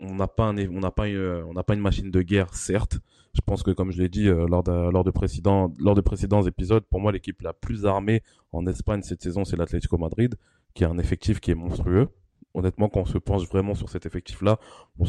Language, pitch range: French, 90-105 Hz